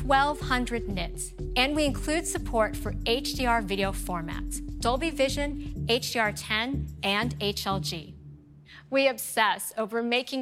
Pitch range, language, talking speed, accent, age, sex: 190-250 Hz, English, 115 wpm, American, 40-59, female